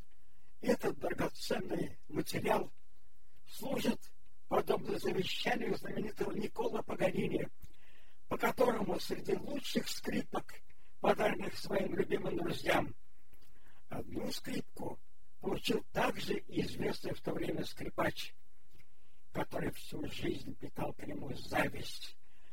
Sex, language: male, Russian